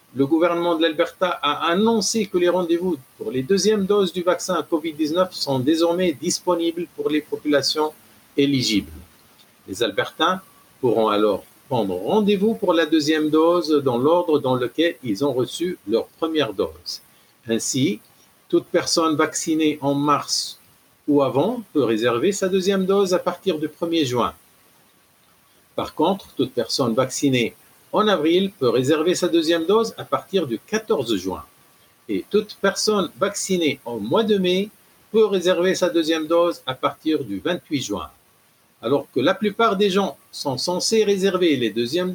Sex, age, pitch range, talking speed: male, 50-69, 145-195 Hz, 155 wpm